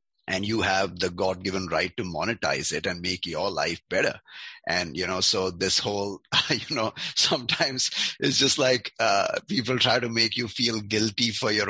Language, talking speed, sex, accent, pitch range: English, 190 wpm, male, Indian, 90-110 Hz